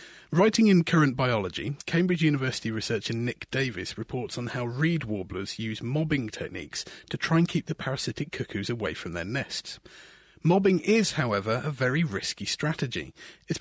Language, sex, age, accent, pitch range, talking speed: English, male, 30-49, British, 115-165 Hz, 160 wpm